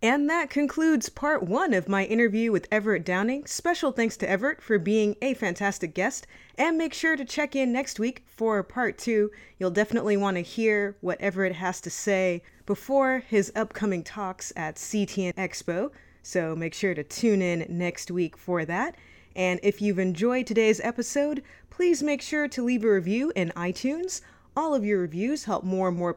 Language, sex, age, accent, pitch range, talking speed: English, female, 30-49, American, 175-245 Hz, 185 wpm